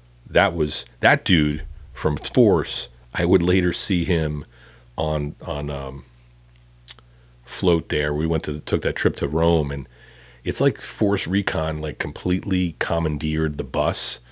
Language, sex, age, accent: English, male, 40-59, American